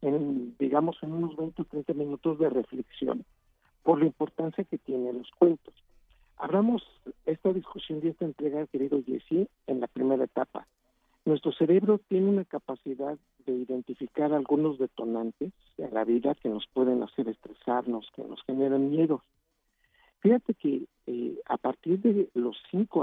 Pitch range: 130-170 Hz